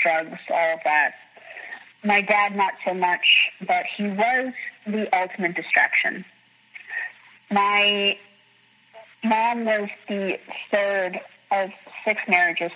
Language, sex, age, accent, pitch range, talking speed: English, female, 30-49, American, 175-220 Hz, 110 wpm